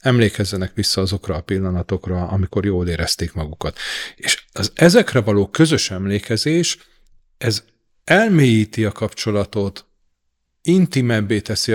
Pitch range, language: 100-135 Hz, Hungarian